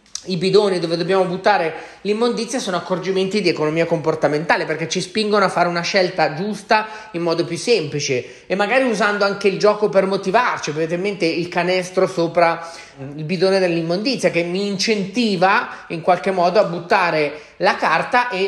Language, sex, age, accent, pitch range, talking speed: Italian, male, 30-49, native, 165-210 Hz, 160 wpm